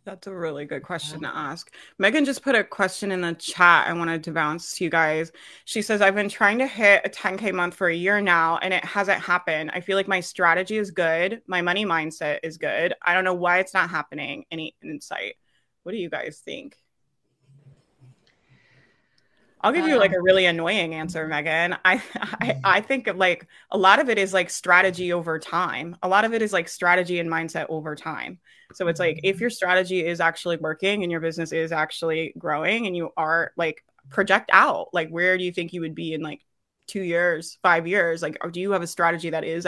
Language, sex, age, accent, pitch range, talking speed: English, female, 20-39, American, 160-185 Hz, 215 wpm